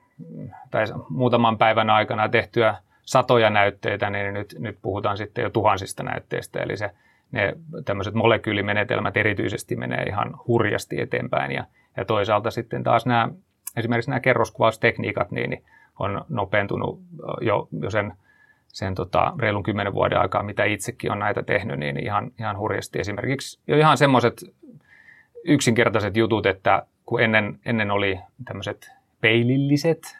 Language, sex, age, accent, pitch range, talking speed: Finnish, male, 30-49, native, 105-120 Hz, 130 wpm